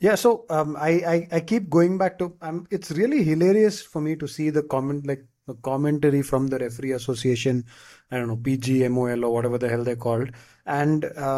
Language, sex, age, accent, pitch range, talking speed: English, male, 30-49, Indian, 140-195 Hz, 200 wpm